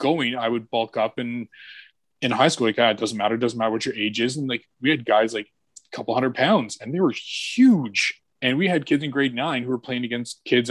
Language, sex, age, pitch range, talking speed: English, male, 20-39, 110-130 Hz, 265 wpm